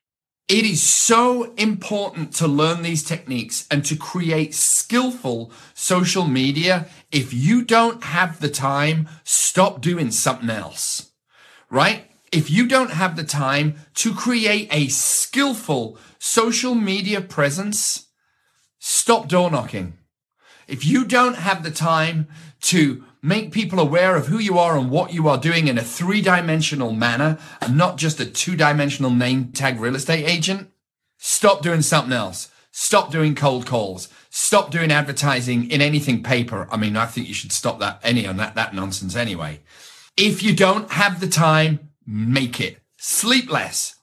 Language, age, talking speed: English, 40-59, 155 wpm